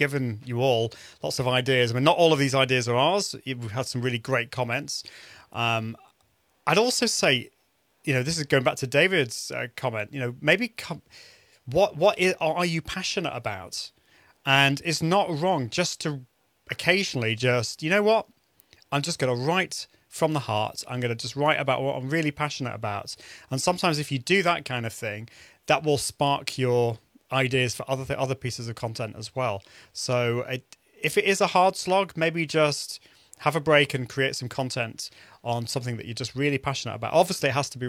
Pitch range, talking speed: 120-150 Hz, 200 wpm